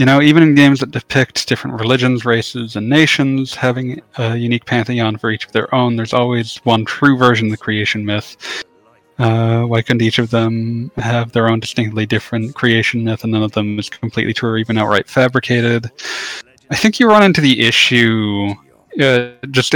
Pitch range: 105-125 Hz